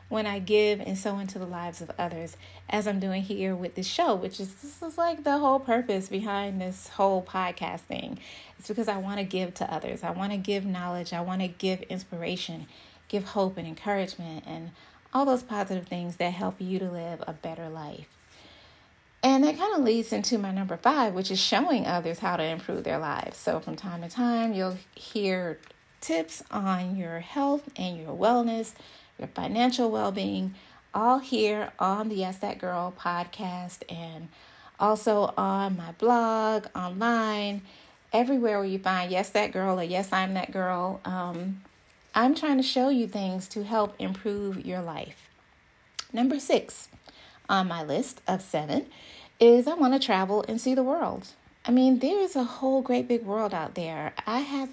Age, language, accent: 30-49, English, American